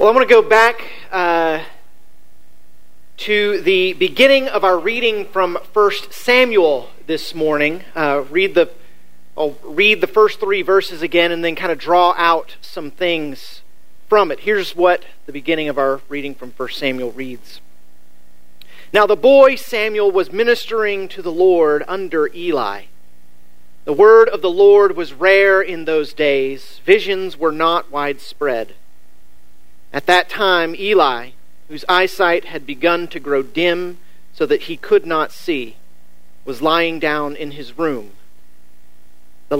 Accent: American